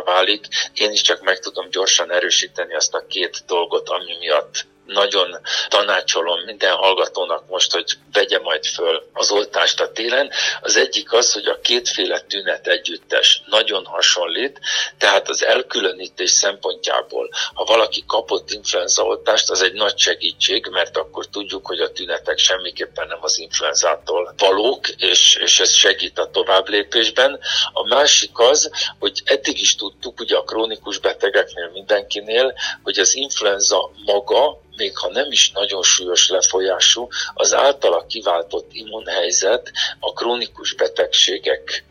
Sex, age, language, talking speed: male, 50-69, Hungarian, 135 wpm